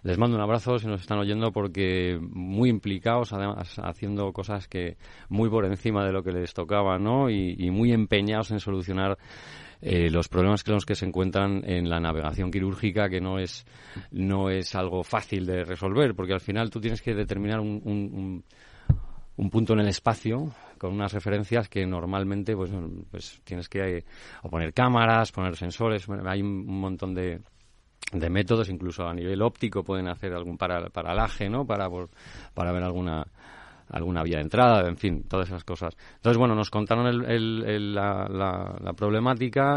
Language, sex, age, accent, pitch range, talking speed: Spanish, male, 30-49, Spanish, 90-110 Hz, 185 wpm